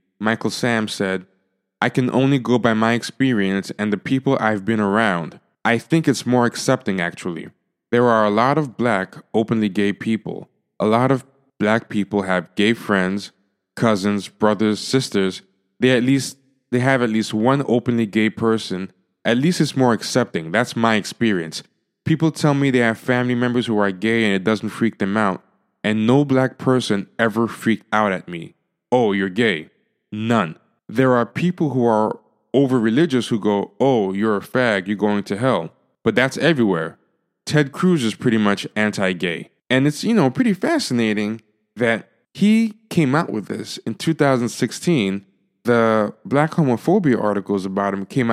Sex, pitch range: male, 100-130 Hz